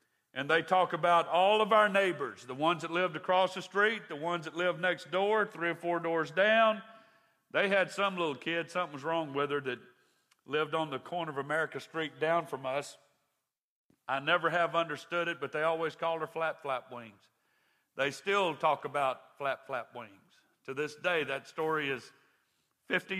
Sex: male